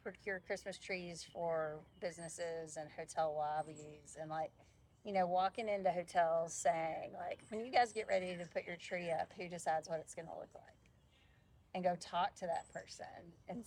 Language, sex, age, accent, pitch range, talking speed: English, female, 30-49, American, 155-190 Hz, 180 wpm